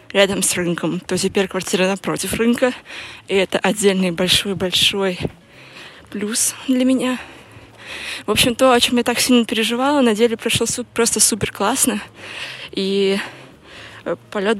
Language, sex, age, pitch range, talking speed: Russian, female, 20-39, 190-240 Hz, 125 wpm